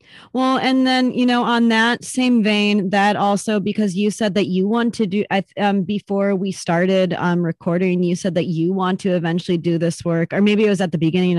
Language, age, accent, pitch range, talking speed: English, 30-49, American, 165-190 Hz, 220 wpm